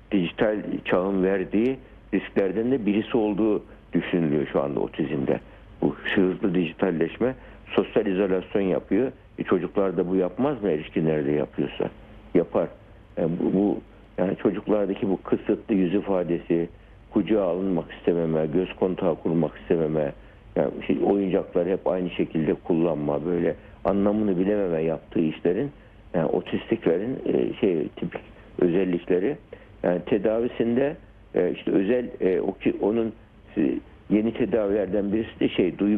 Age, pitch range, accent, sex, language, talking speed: 60-79, 85-105 Hz, native, male, Turkish, 120 wpm